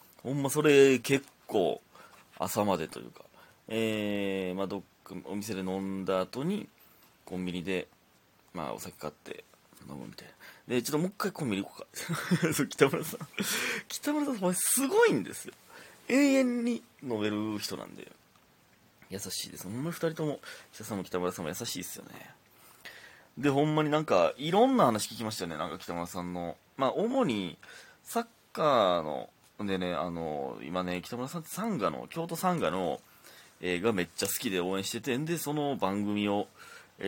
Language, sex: Japanese, male